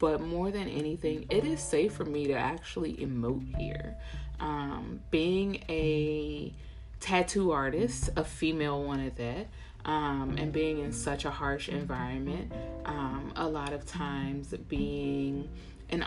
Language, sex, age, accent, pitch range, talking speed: English, female, 20-39, American, 135-175 Hz, 140 wpm